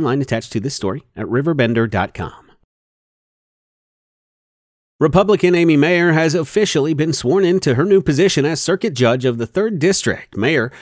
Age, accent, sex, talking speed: 40-59, American, male, 145 wpm